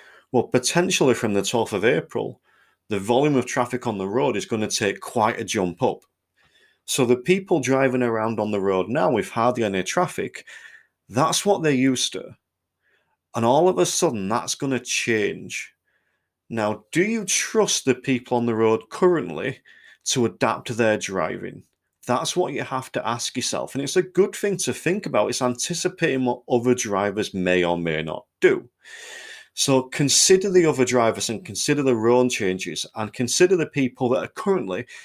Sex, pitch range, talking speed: male, 110-170 Hz, 175 wpm